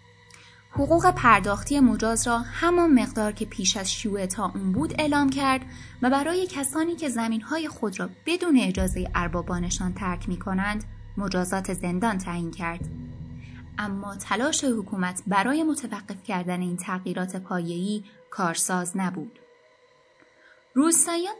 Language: Persian